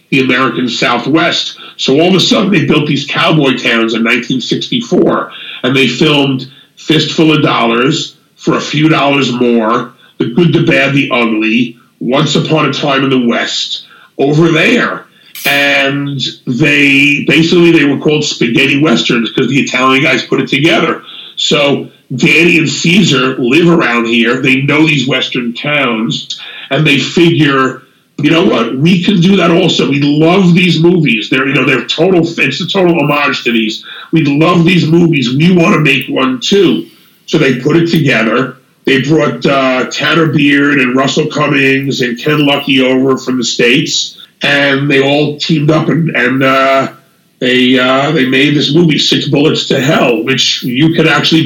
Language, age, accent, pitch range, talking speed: English, 50-69, American, 130-160 Hz, 170 wpm